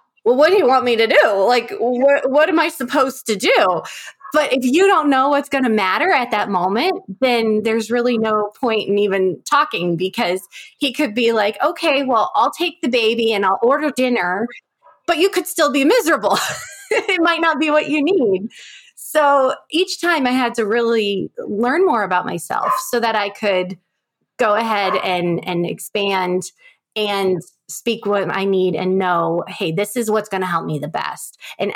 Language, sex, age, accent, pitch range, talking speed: English, female, 20-39, American, 180-260 Hz, 195 wpm